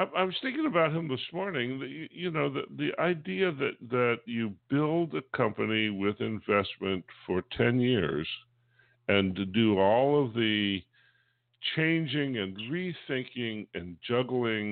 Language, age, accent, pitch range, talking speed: English, 60-79, American, 95-130 Hz, 140 wpm